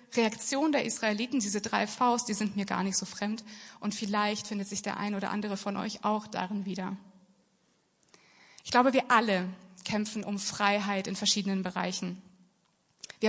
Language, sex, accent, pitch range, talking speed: German, female, German, 195-230 Hz, 165 wpm